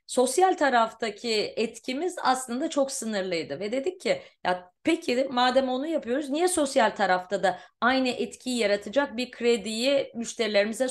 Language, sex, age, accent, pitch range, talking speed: Turkish, female, 30-49, native, 215-280 Hz, 130 wpm